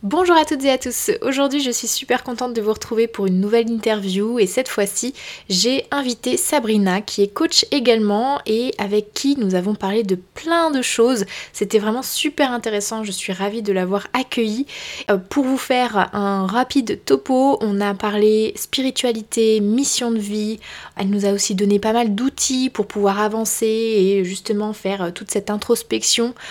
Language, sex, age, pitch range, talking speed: French, female, 20-39, 200-250 Hz, 175 wpm